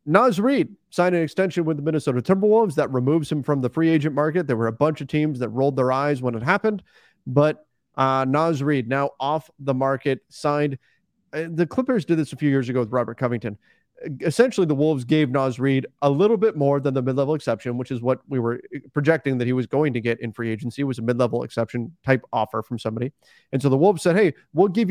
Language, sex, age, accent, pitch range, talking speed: English, male, 30-49, American, 125-160 Hz, 230 wpm